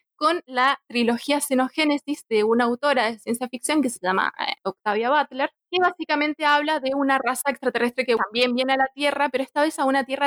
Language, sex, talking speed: Spanish, female, 205 wpm